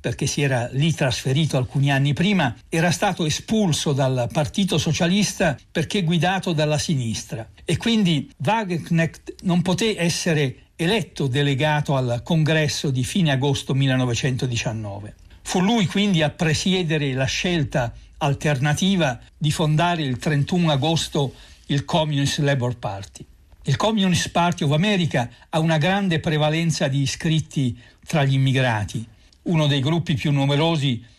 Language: Italian